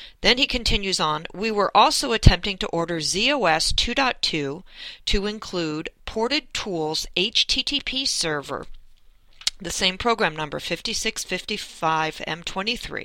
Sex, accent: female, American